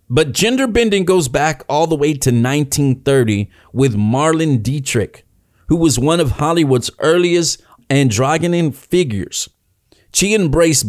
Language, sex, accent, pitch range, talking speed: English, male, American, 115-155 Hz, 125 wpm